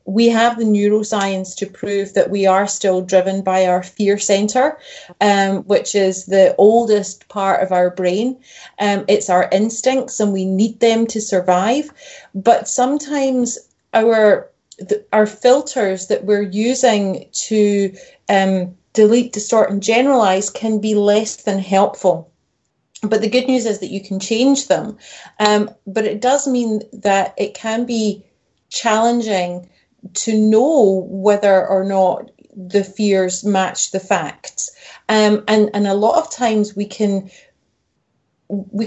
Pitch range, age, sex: 195-230 Hz, 30-49, female